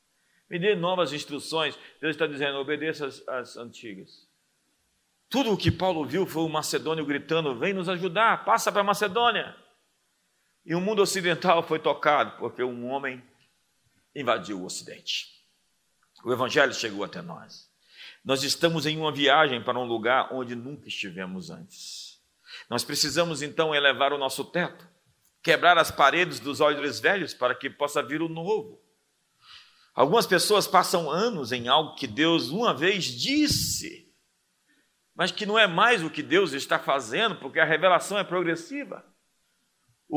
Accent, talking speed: Brazilian, 150 wpm